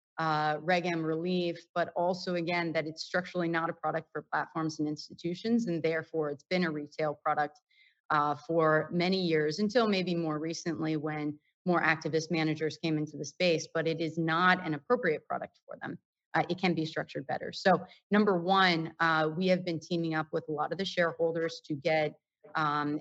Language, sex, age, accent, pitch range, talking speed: English, female, 30-49, American, 155-175 Hz, 190 wpm